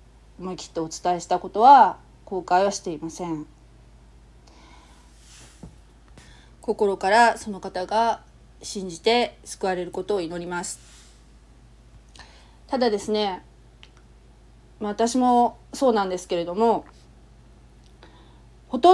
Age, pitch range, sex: 30-49, 165-225 Hz, female